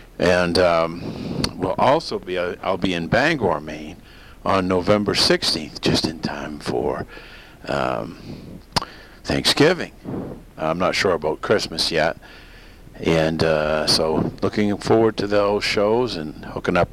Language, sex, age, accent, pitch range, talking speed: English, male, 50-69, American, 85-110 Hz, 130 wpm